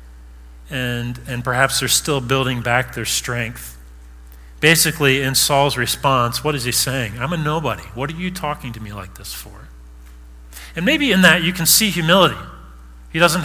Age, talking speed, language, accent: 40-59, 175 wpm, English, American